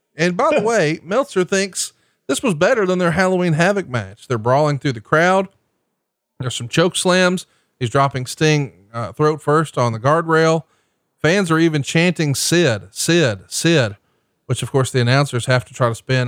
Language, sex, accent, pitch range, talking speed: English, male, American, 125-160 Hz, 180 wpm